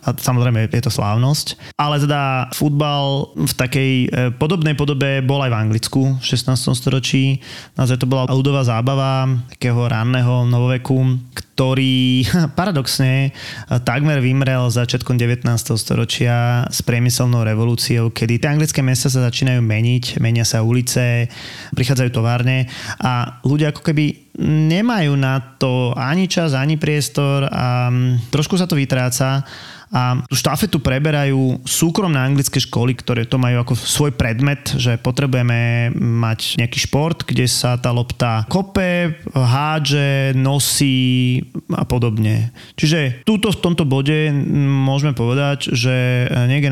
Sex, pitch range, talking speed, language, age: male, 120-140 Hz, 130 wpm, Slovak, 20-39